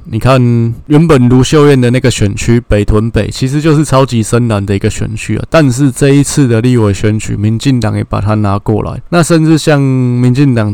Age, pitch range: 20-39, 110-130 Hz